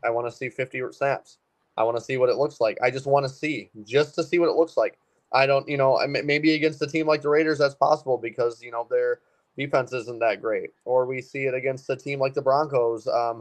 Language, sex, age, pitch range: English, male, 20-39, 120-140 Hz